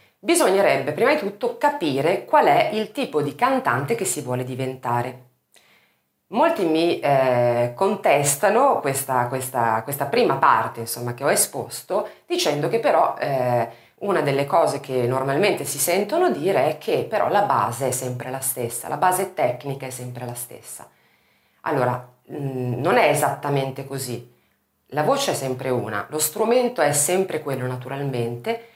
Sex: female